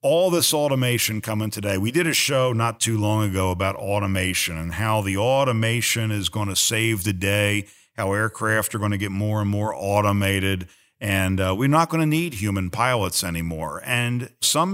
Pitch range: 95-125 Hz